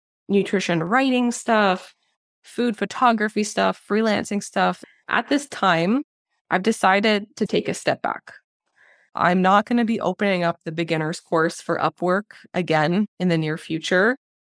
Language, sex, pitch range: English, female, 170-210 Hz